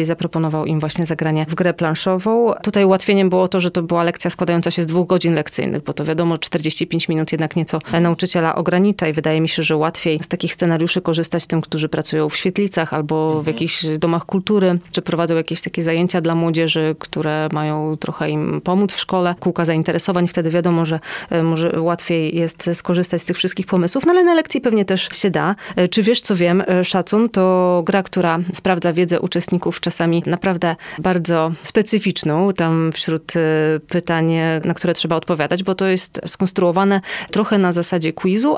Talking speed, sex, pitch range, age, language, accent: 180 wpm, female, 165-185 Hz, 30-49, Polish, native